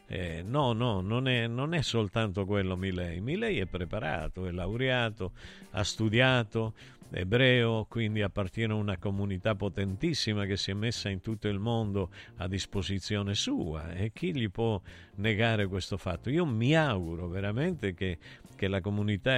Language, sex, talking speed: Italian, male, 155 wpm